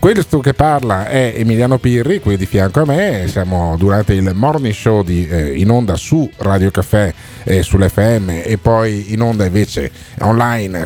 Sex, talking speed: male, 165 wpm